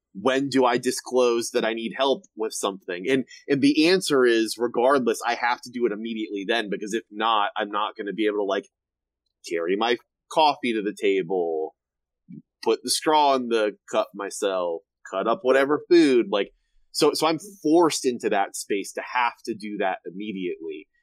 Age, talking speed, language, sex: 30-49, 185 wpm, English, male